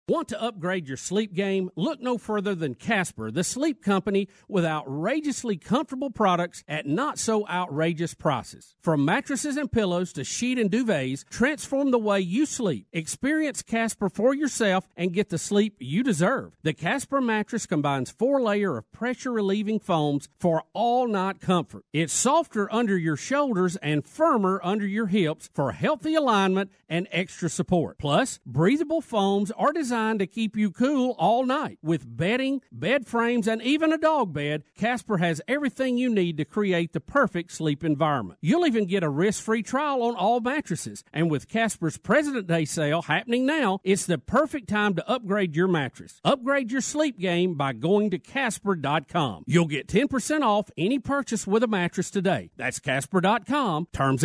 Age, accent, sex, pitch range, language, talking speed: 50-69, American, male, 170-245 Hz, English, 165 wpm